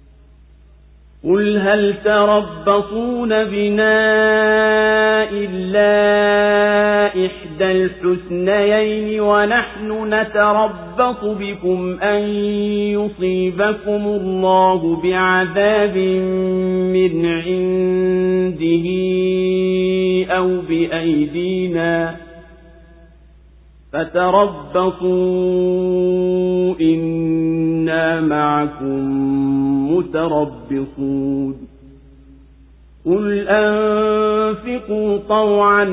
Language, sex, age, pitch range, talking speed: English, male, 50-69, 160-205 Hz, 40 wpm